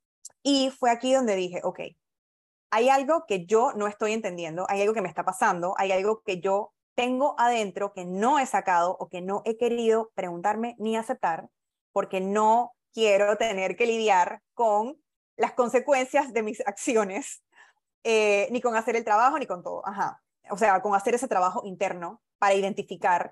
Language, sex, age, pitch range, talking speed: Spanish, female, 20-39, 195-245 Hz, 175 wpm